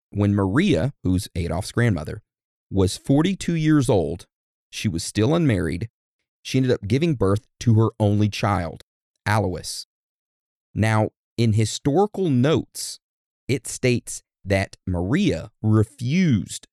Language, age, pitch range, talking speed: English, 30-49, 95-135 Hz, 115 wpm